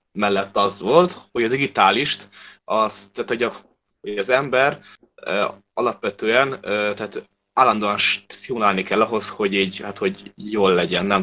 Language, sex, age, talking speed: Hungarian, male, 20-39, 150 wpm